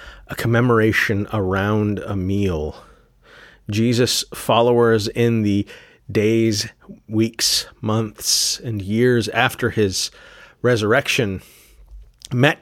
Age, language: 30-49, English